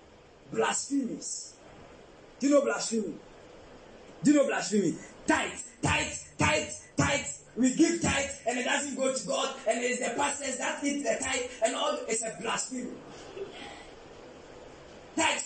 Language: English